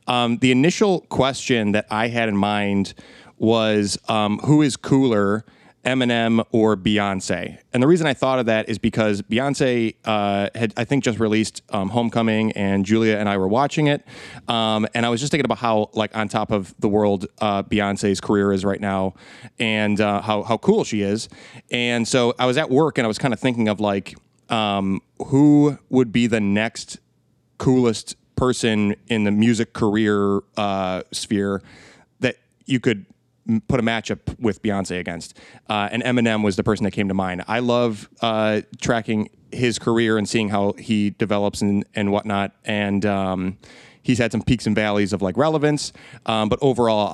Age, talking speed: 30-49, 185 wpm